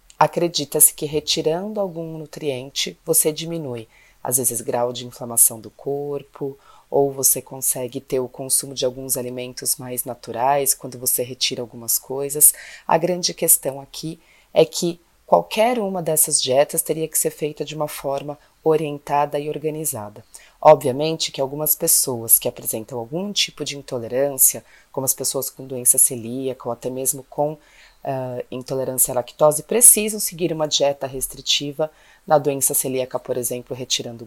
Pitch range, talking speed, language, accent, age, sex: 130-165 Hz, 145 wpm, Portuguese, Brazilian, 30-49, female